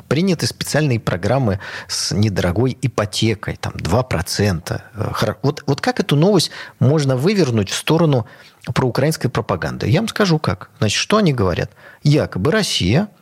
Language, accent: Russian, native